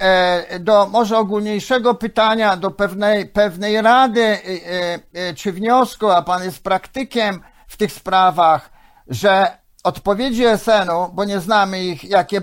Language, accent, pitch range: Polish, native, 180-210 Hz